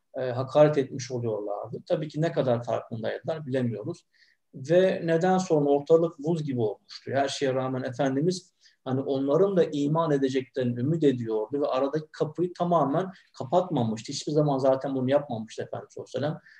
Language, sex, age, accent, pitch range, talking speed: Turkish, male, 50-69, native, 125-165 Hz, 140 wpm